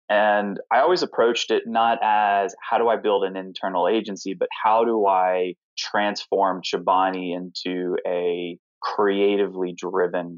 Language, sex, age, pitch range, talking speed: English, male, 20-39, 90-115 Hz, 140 wpm